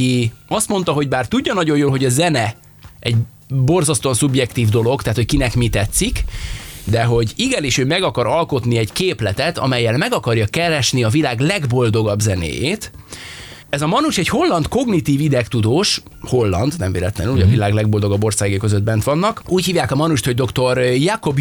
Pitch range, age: 115-150 Hz, 20-39